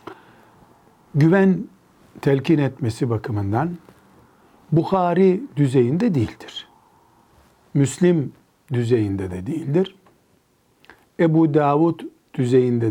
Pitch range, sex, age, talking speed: 130-175 Hz, male, 60-79, 65 wpm